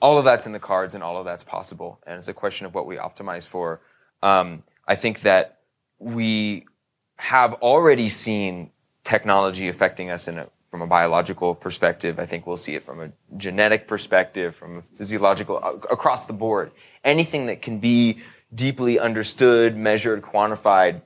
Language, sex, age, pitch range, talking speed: English, male, 20-39, 95-110 Hz, 170 wpm